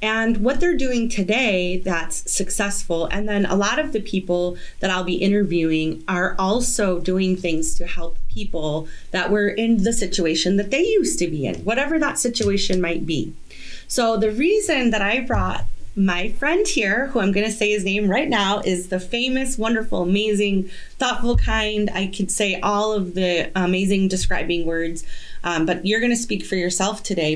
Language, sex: English, female